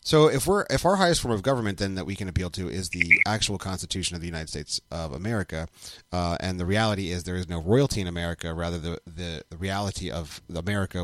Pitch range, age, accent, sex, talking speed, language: 85-105 Hz, 30-49, American, male, 230 wpm, English